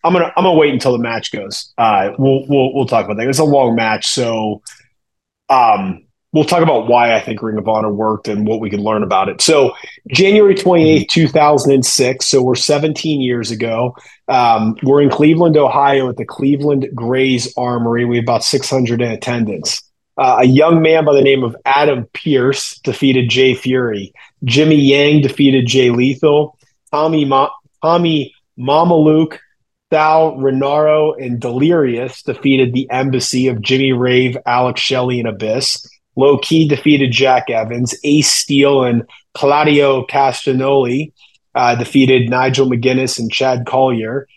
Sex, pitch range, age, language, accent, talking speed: male, 125-145 Hz, 30-49, English, American, 165 wpm